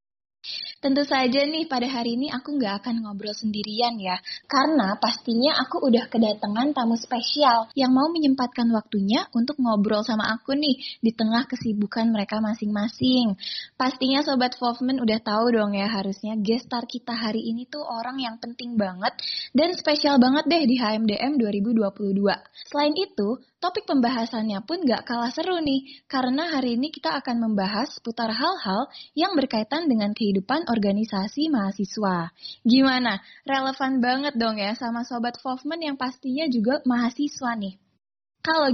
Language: Indonesian